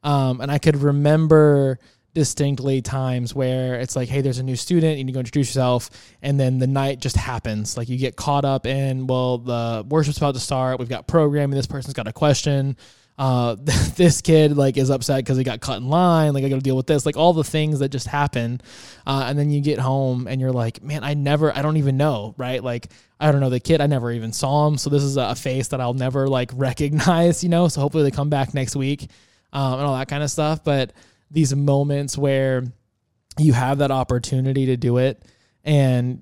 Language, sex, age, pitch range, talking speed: English, male, 20-39, 130-145 Hz, 235 wpm